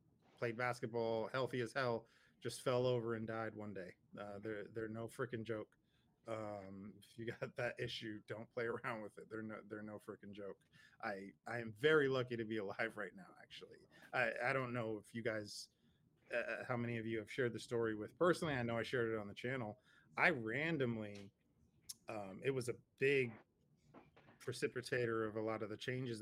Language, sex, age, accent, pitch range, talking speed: English, male, 30-49, American, 110-125 Hz, 200 wpm